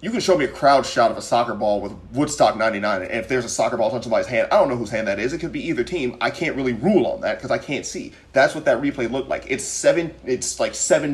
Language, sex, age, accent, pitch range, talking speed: English, male, 30-49, American, 105-165 Hz, 300 wpm